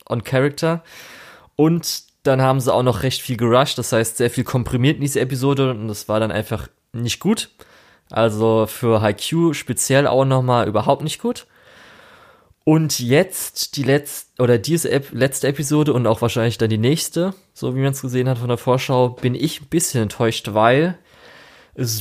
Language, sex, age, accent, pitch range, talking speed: German, male, 20-39, German, 115-145 Hz, 185 wpm